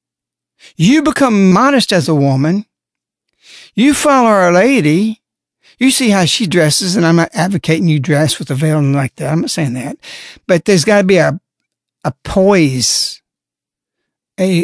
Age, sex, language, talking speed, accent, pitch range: 60-79, male, English, 160 wpm, American, 150-200 Hz